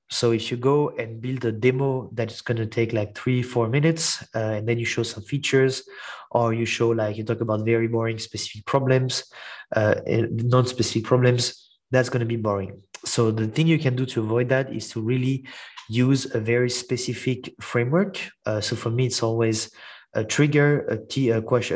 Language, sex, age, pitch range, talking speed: English, male, 30-49, 115-130 Hz, 200 wpm